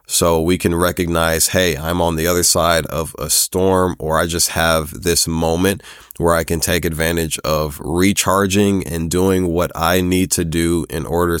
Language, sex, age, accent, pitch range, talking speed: English, male, 30-49, American, 80-95 Hz, 185 wpm